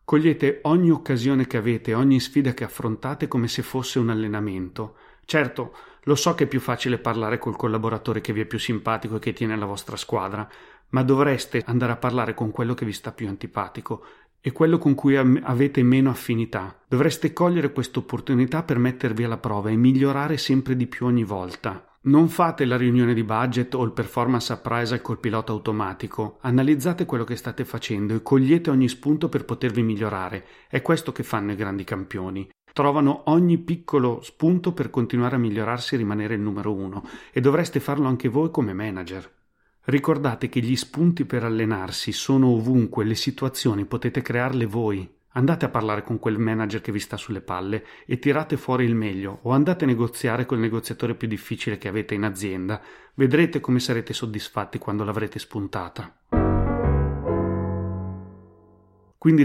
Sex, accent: male, native